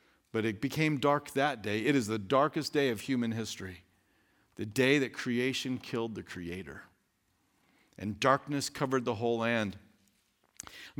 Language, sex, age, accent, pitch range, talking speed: English, male, 50-69, American, 125-175 Hz, 155 wpm